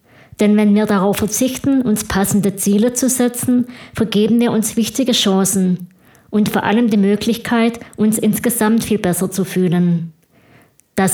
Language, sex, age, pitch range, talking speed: German, female, 20-39, 195-230 Hz, 145 wpm